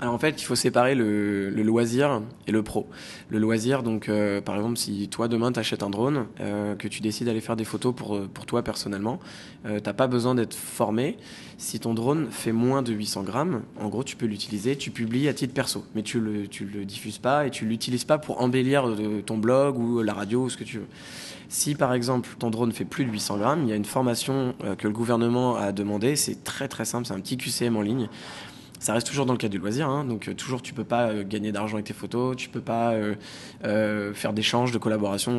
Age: 20-39